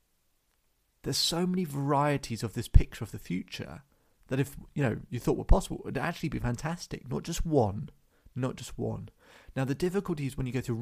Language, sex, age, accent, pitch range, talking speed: English, male, 30-49, British, 115-165 Hz, 205 wpm